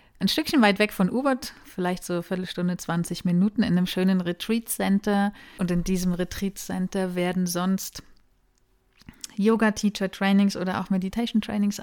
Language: German